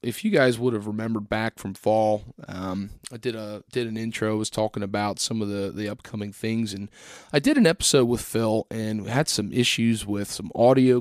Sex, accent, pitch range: male, American, 105-115 Hz